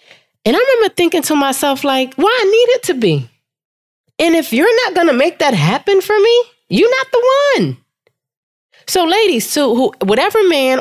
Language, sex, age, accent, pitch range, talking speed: English, female, 20-39, American, 165-270 Hz, 185 wpm